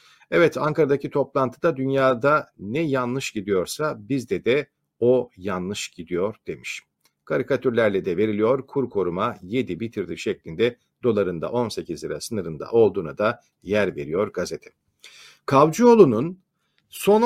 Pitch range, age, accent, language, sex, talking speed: 120-180 Hz, 50-69, native, Turkish, male, 110 wpm